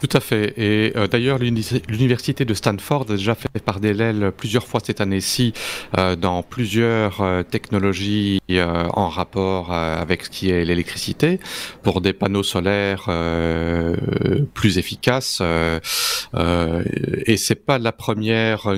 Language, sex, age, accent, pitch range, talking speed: French, male, 40-59, French, 95-115 Hz, 145 wpm